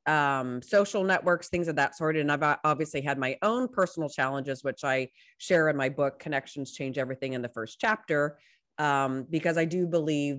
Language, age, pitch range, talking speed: English, 30-49, 145-195 Hz, 190 wpm